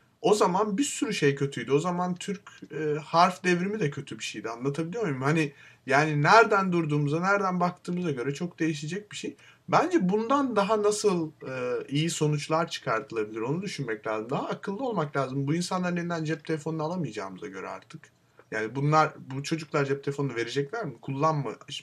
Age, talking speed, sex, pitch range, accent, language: 30-49, 160 wpm, male, 125-170 Hz, native, Turkish